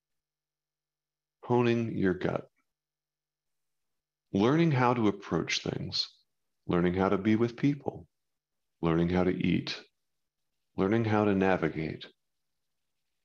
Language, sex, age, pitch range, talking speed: English, male, 40-59, 90-105 Hz, 100 wpm